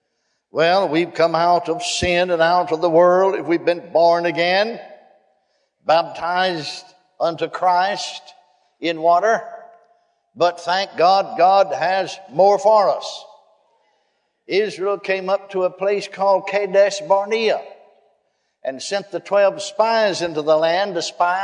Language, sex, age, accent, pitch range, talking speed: English, male, 60-79, American, 170-220 Hz, 135 wpm